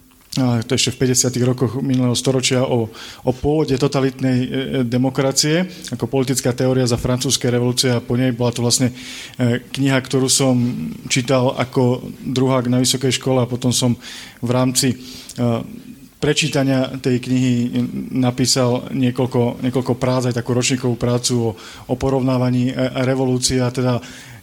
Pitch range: 125-135 Hz